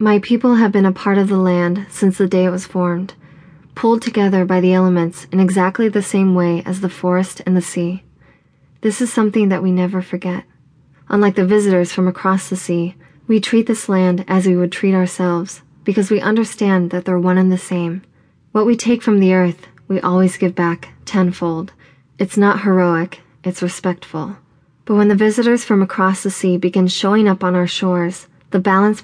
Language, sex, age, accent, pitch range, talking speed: English, female, 20-39, American, 175-195 Hz, 195 wpm